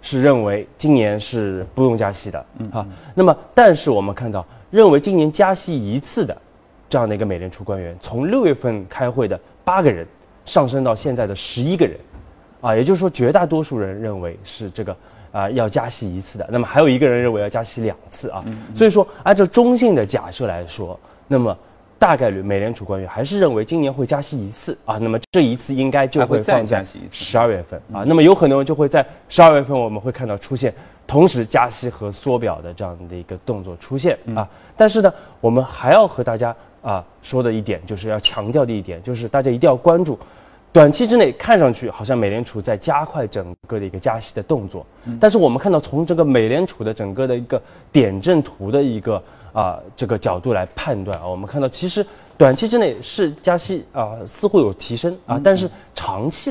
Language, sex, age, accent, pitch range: Chinese, male, 20-39, native, 100-155 Hz